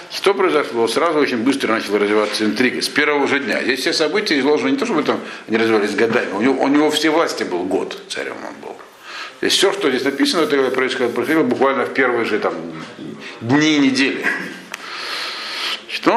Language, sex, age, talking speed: Russian, male, 60-79, 185 wpm